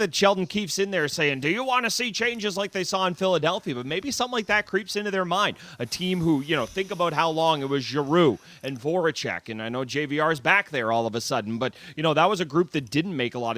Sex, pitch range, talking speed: male, 120-160 Hz, 280 wpm